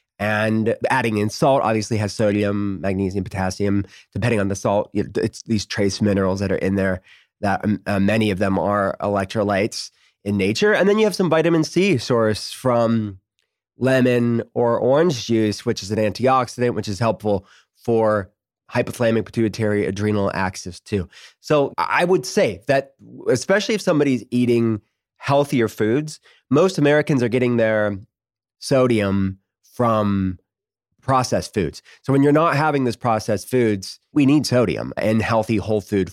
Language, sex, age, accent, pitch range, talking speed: English, male, 30-49, American, 105-130 Hz, 150 wpm